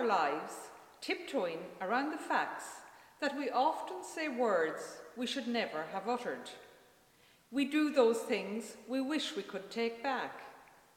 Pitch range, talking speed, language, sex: 220-285 Hz, 135 wpm, English, female